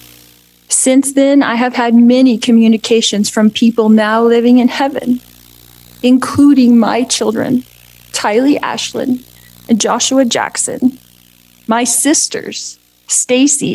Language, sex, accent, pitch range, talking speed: English, female, American, 215-265 Hz, 105 wpm